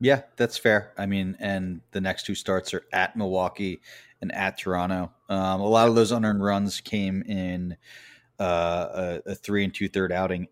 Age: 30-49